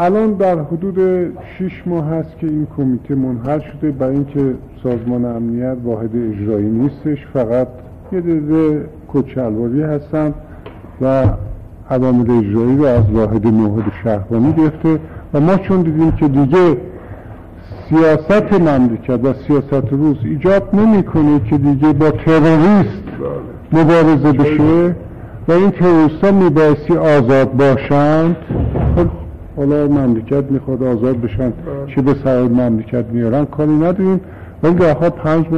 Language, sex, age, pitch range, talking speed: Persian, male, 50-69, 110-155 Hz, 125 wpm